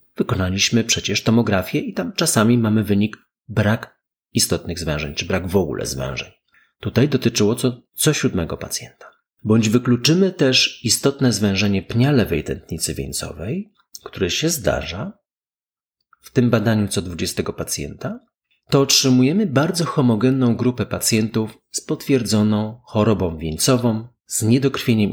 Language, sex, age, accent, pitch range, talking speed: Polish, male, 30-49, native, 100-125 Hz, 125 wpm